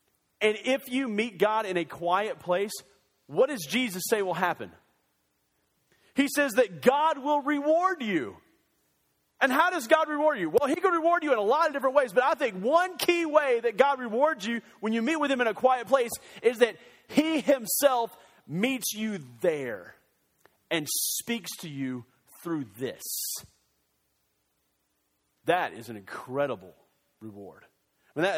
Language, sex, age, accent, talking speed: English, male, 40-59, American, 165 wpm